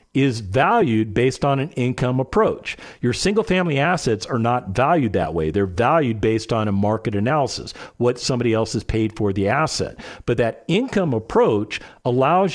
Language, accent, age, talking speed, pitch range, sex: English, American, 50-69, 170 wpm, 120-170 Hz, male